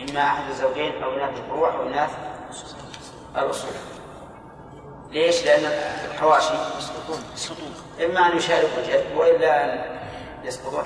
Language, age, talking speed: Arabic, 30-49, 110 wpm